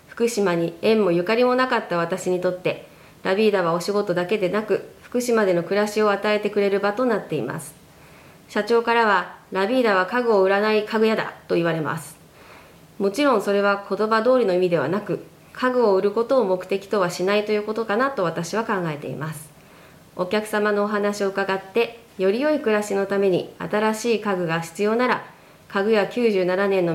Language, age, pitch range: Japanese, 20-39, 185-225 Hz